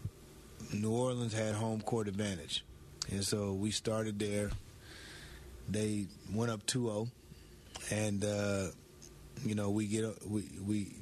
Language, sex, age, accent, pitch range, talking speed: English, male, 30-49, American, 100-115 Hz, 120 wpm